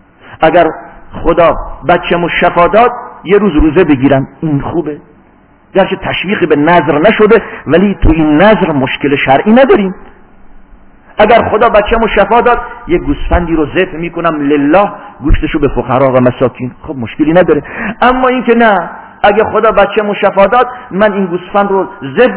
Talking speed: 160 wpm